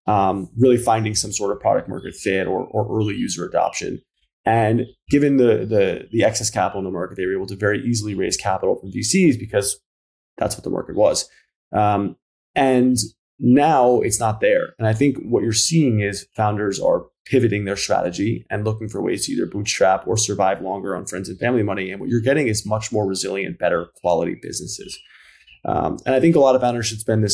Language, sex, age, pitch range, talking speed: English, male, 20-39, 100-120 Hz, 210 wpm